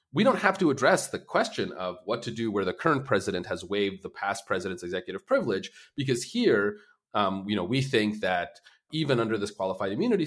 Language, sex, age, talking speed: English, male, 30-49, 205 wpm